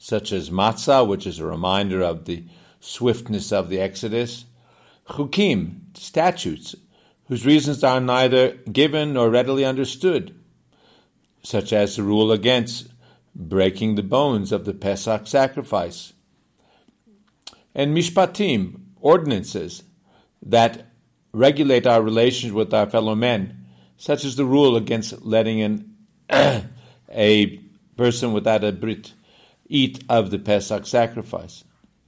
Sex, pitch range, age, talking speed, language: male, 110-140 Hz, 50-69, 120 wpm, English